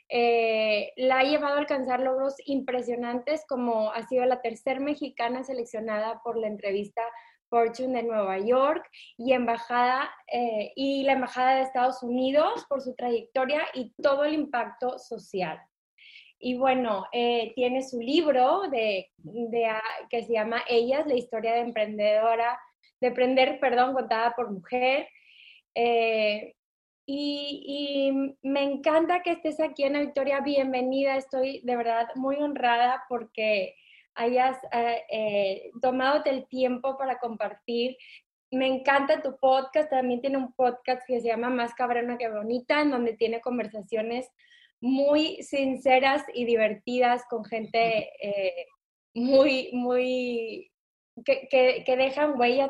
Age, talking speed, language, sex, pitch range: 20-39, 140 wpm, English, female, 235-275 Hz